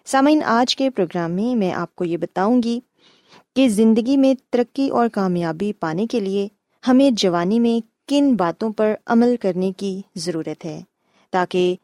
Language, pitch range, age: Urdu, 190-260 Hz, 20-39